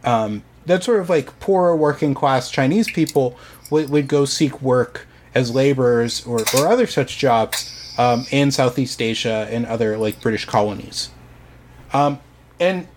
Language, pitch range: English, 125-155 Hz